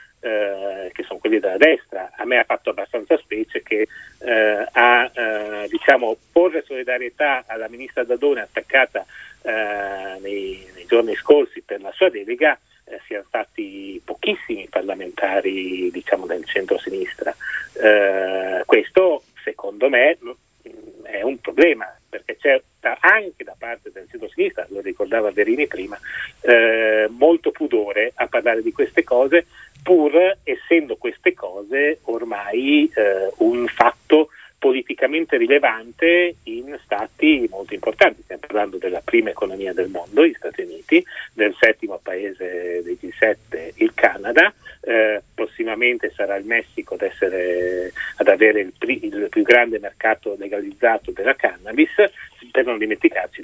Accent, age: native, 40-59